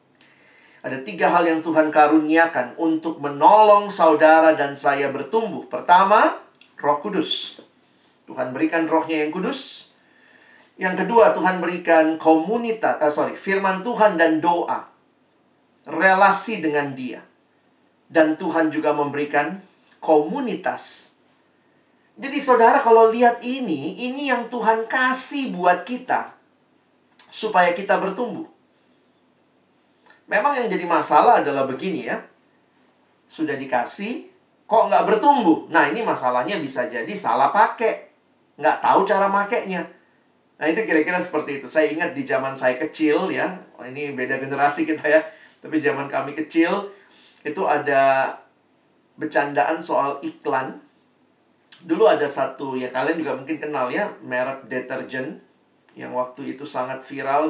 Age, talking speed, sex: 40-59, 125 wpm, male